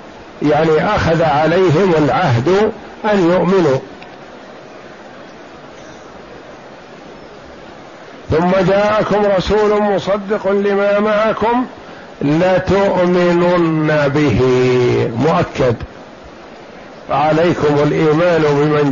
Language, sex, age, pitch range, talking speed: Arabic, male, 50-69, 155-190 Hz, 55 wpm